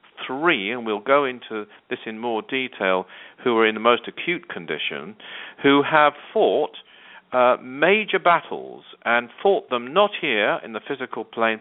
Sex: male